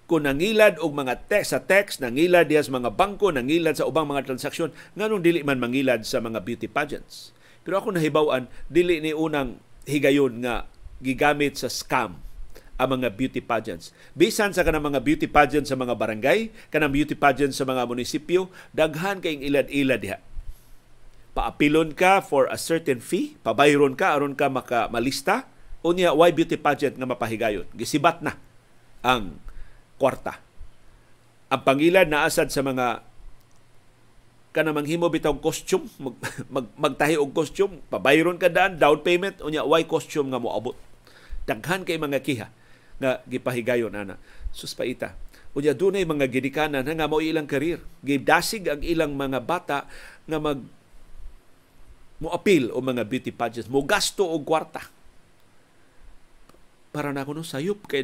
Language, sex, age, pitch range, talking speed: Filipino, male, 50-69, 125-165 Hz, 145 wpm